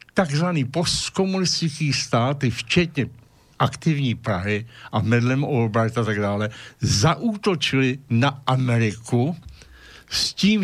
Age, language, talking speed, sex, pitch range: 70-89, Slovak, 95 wpm, male, 110-155 Hz